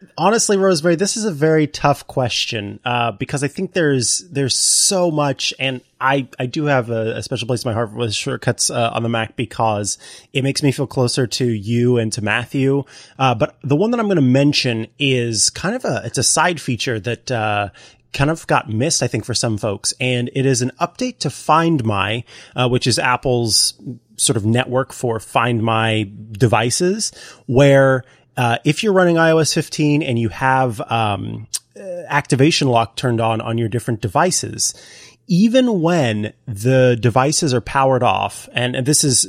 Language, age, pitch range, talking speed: English, 30-49, 115-150 Hz, 190 wpm